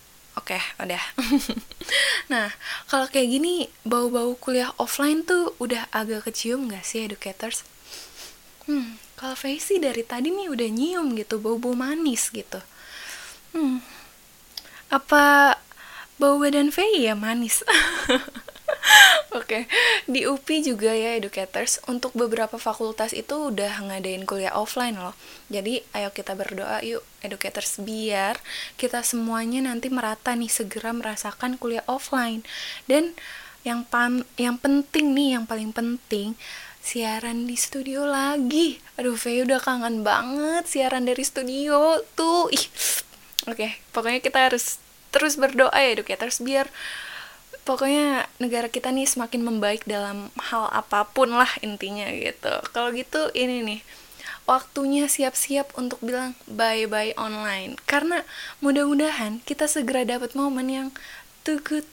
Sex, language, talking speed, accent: female, Indonesian, 130 wpm, native